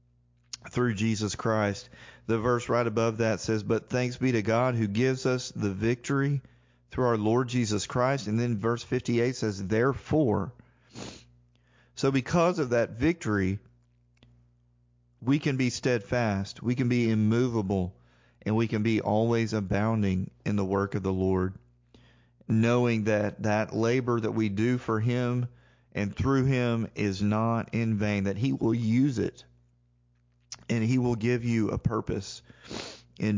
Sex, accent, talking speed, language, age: male, American, 150 wpm, English, 40-59